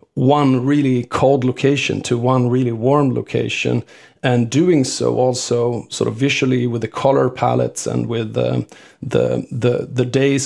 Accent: Swedish